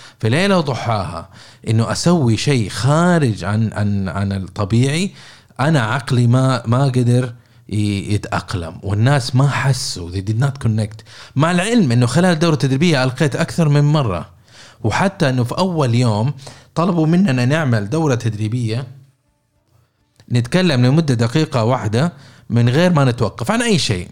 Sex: male